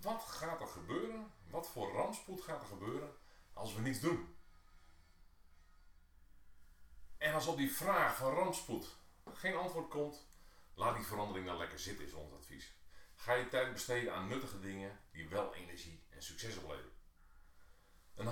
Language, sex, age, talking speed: Dutch, male, 40-59, 155 wpm